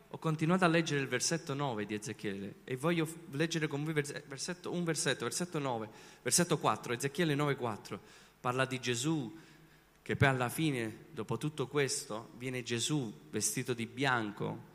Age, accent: 30-49, native